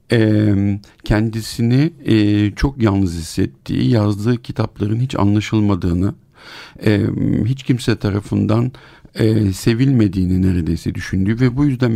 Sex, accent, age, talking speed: male, native, 50-69, 85 wpm